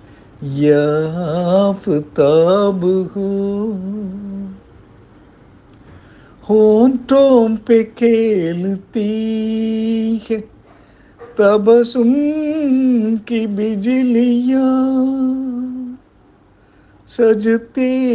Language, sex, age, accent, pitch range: Tamil, male, 50-69, native, 165-235 Hz